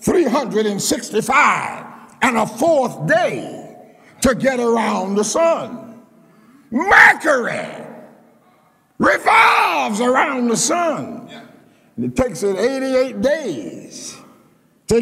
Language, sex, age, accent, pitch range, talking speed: English, male, 60-79, American, 220-295 Hz, 85 wpm